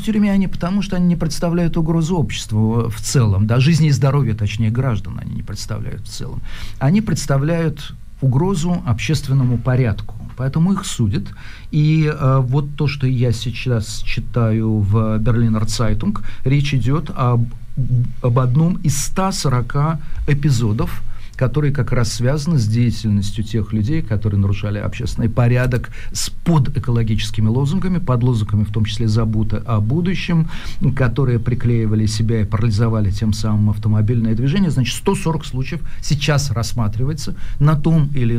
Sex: male